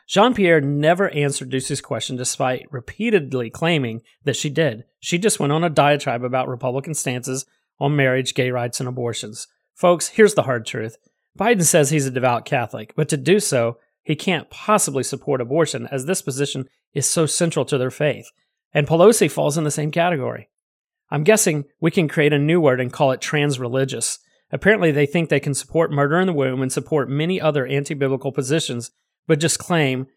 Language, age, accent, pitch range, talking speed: English, 30-49, American, 130-160 Hz, 185 wpm